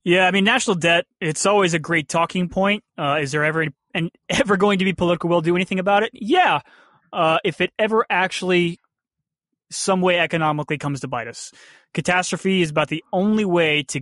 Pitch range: 150-205 Hz